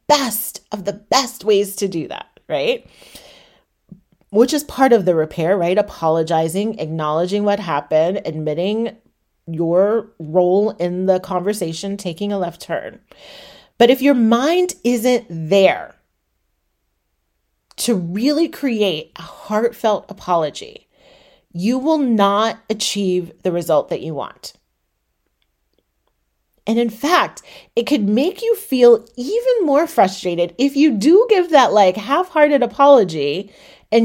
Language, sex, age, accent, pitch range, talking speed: English, female, 30-49, American, 185-260 Hz, 125 wpm